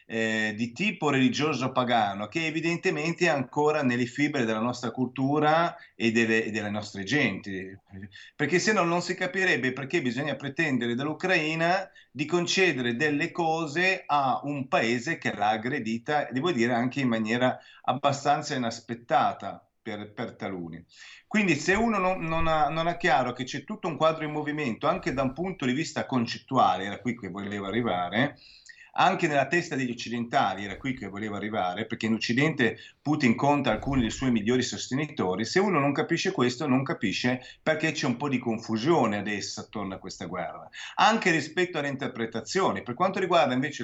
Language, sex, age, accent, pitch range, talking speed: Italian, male, 40-59, native, 115-160 Hz, 165 wpm